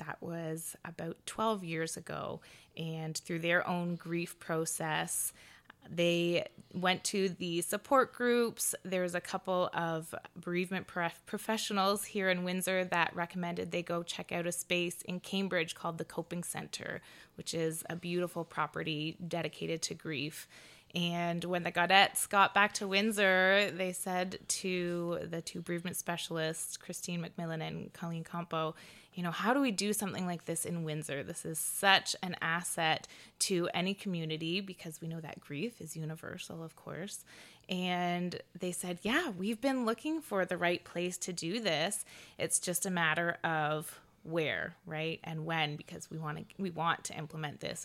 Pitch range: 165-185 Hz